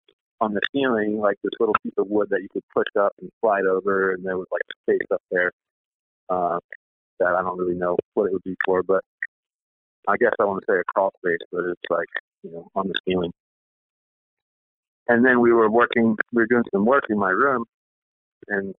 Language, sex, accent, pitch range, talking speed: English, male, American, 95-130 Hz, 215 wpm